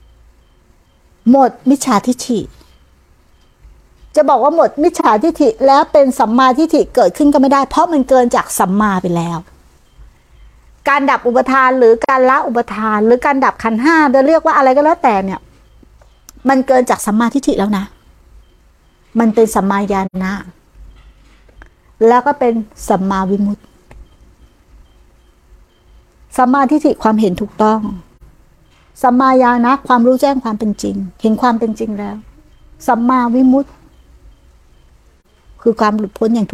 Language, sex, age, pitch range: Thai, female, 60-79, 200-265 Hz